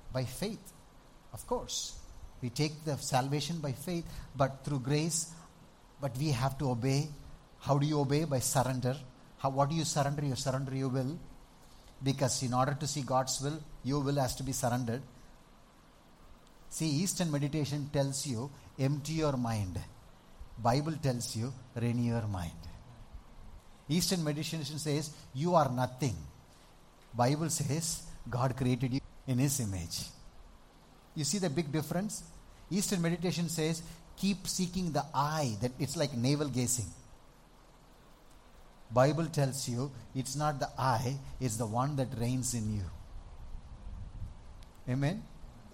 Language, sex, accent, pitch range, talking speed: English, male, Indian, 120-155 Hz, 140 wpm